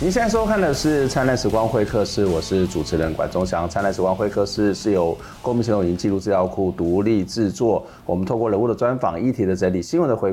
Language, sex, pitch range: Chinese, male, 90-110 Hz